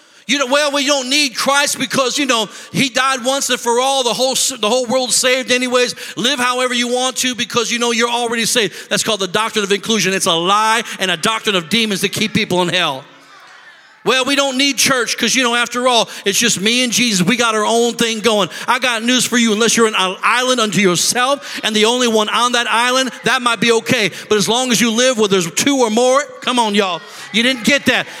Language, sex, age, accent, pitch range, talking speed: English, male, 40-59, American, 225-275 Hz, 245 wpm